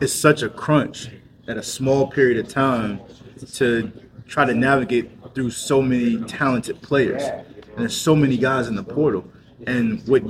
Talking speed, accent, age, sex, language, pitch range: 170 wpm, American, 20-39, male, English, 120-140 Hz